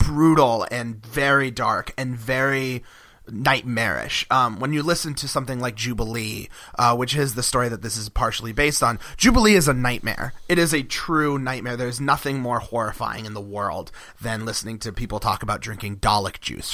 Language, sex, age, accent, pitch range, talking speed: English, male, 30-49, American, 115-155 Hz, 185 wpm